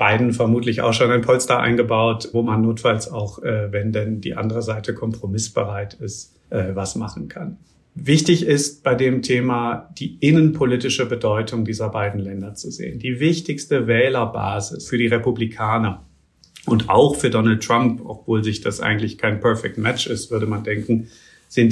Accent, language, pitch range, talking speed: German, German, 110-125 Hz, 165 wpm